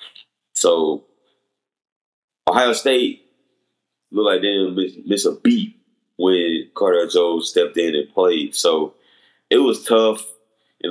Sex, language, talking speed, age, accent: male, English, 120 wpm, 20-39, American